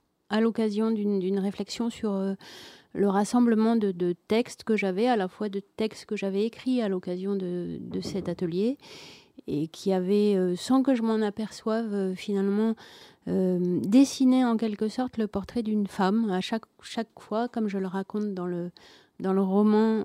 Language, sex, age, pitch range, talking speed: French, female, 30-49, 190-230 Hz, 185 wpm